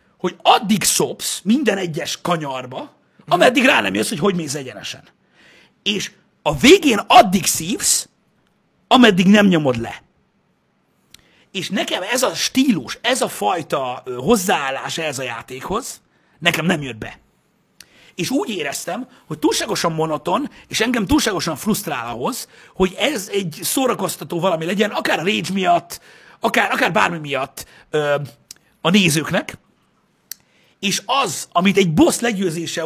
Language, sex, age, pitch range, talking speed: Hungarian, male, 50-69, 155-215 Hz, 130 wpm